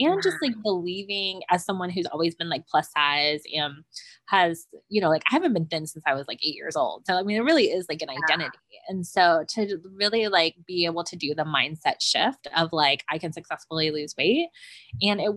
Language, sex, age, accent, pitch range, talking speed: English, female, 20-39, American, 165-235 Hz, 225 wpm